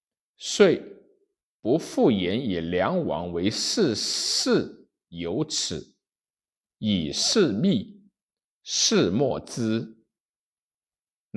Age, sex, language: 60-79, male, Chinese